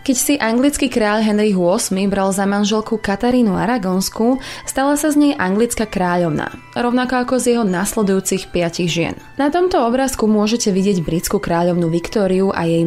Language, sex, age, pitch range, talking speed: Slovak, female, 20-39, 175-225 Hz, 160 wpm